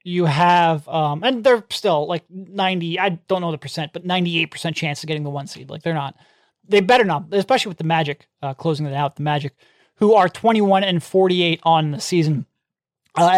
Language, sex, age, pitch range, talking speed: English, male, 30-49, 160-195 Hz, 205 wpm